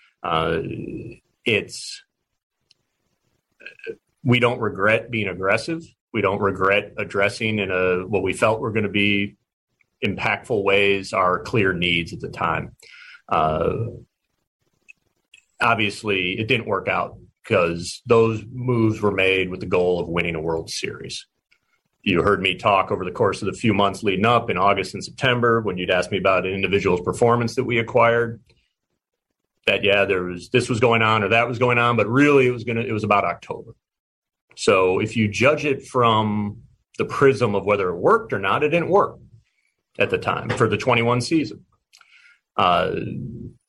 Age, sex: 40-59, male